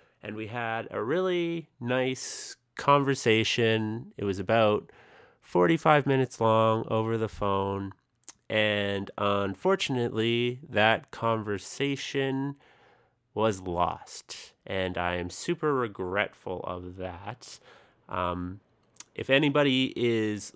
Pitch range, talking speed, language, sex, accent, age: 100-125 Hz, 95 wpm, English, male, American, 30-49